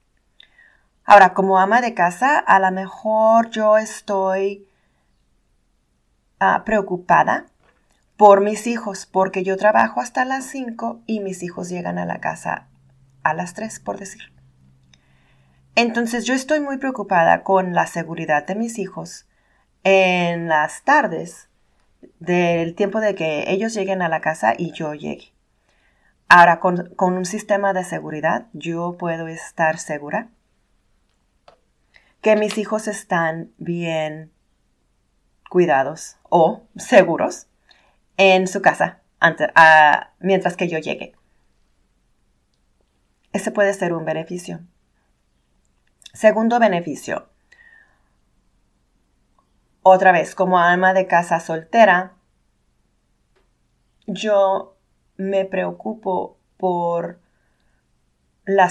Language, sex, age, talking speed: Spanish, female, 30-49, 105 wpm